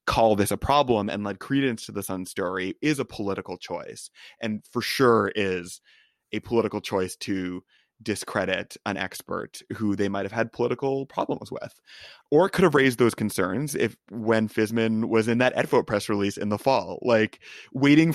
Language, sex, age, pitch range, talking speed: English, male, 20-39, 105-125 Hz, 180 wpm